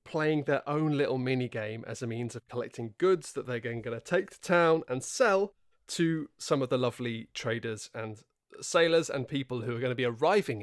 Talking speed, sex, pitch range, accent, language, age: 210 wpm, male, 120-165 Hz, British, English, 20-39